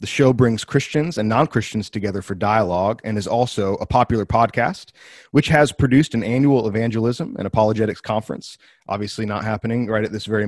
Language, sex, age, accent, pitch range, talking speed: English, male, 30-49, American, 105-130 Hz, 180 wpm